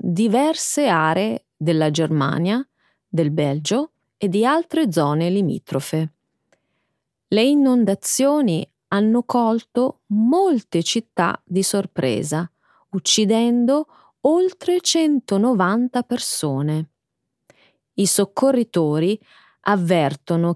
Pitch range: 165-255 Hz